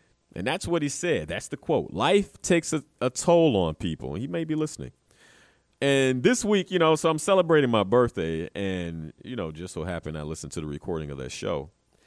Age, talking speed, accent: 40-59, 215 wpm, American